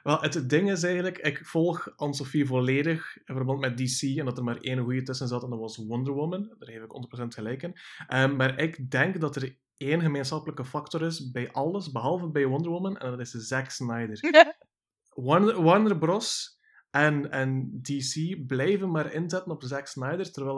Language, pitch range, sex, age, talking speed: Dutch, 130-160 Hz, male, 20-39, 190 wpm